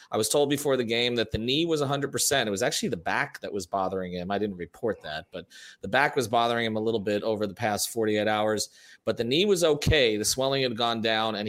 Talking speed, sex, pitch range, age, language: 255 wpm, male, 105-130 Hz, 30-49, English